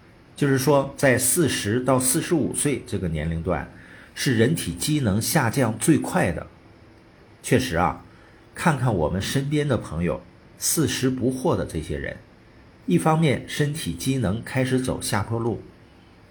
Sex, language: male, Chinese